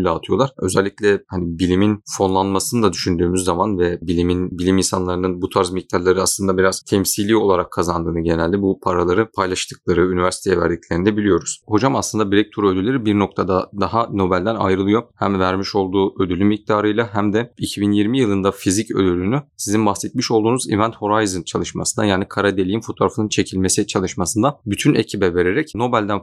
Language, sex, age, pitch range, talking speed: Turkish, male, 30-49, 95-120 Hz, 150 wpm